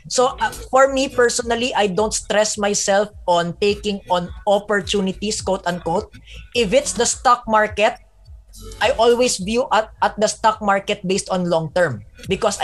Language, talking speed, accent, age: English, 155 wpm, Filipino, 20-39